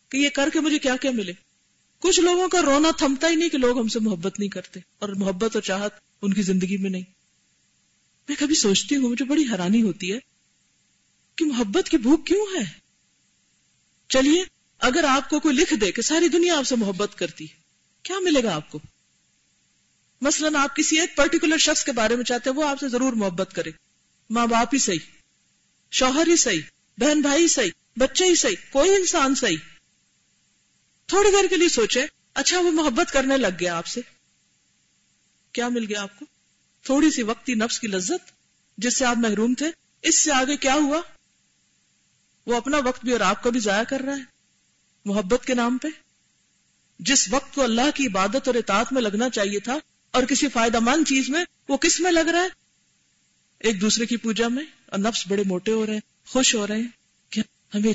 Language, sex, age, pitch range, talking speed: Urdu, female, 40-59, 205-295 Hz, 150 wpm